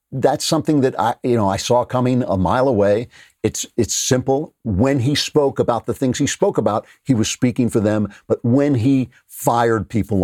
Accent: American